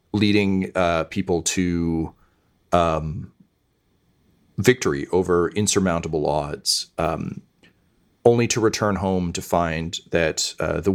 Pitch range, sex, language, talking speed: 85-100 Hz, male, English, 105 wpm